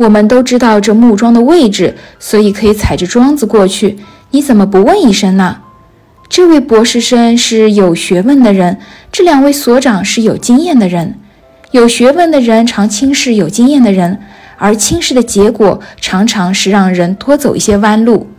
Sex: female